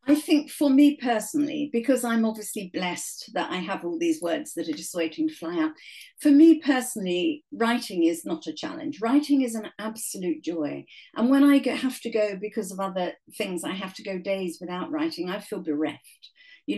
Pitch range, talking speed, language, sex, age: 195-295 Hz, 200 wpm, English, female, 50-69